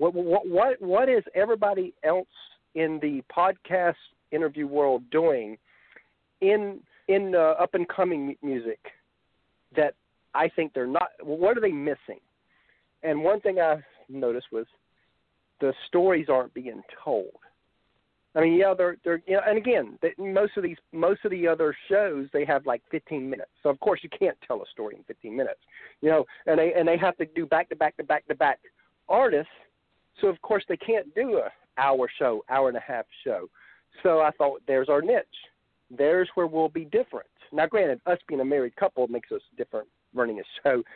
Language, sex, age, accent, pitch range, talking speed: English, male, 50-69, American, 145-195 Hz, 185 wpm